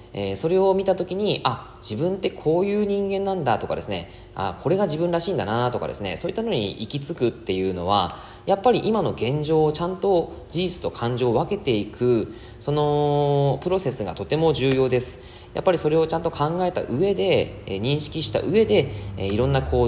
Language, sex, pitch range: Japanese, male, 105-155 Hz